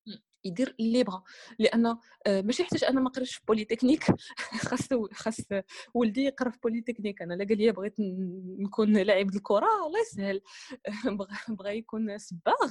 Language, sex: Arabic, female